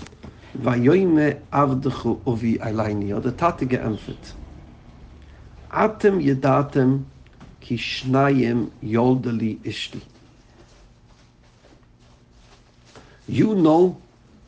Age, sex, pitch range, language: 50-69, male, 115-165 Hz, English